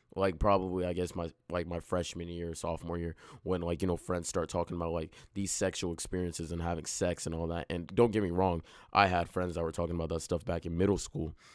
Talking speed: 245 wpm